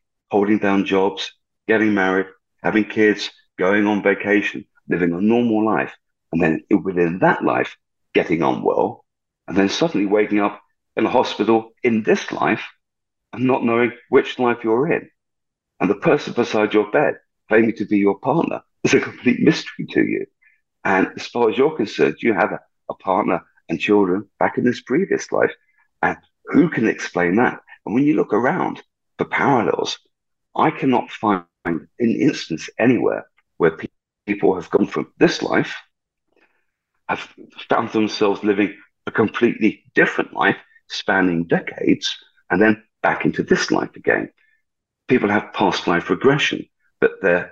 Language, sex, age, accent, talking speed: English, male, 40-59, British, 155 wpm